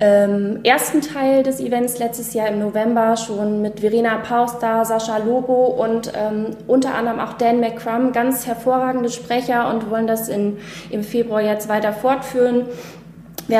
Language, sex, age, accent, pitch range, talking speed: German, female, 20-39, German, 210-235 Hz, 160 wpm